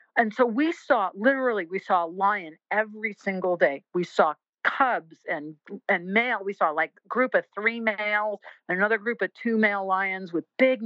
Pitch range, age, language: 185-235 Hz, 50-69, English